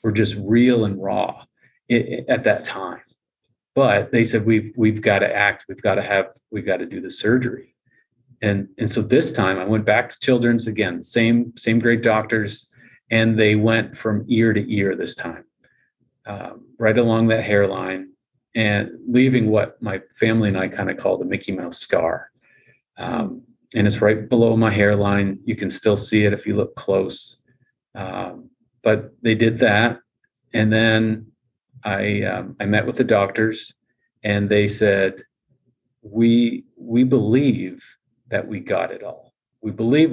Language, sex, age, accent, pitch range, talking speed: English, male, 30-49, American, 105-120 Hz, 165 wpm